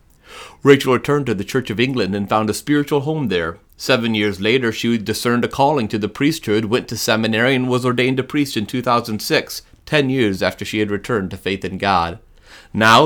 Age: 30-49